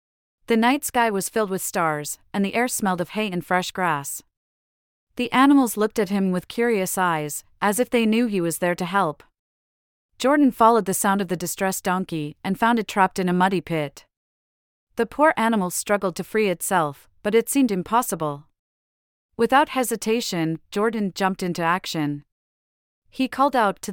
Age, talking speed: 30-49, 175 wpm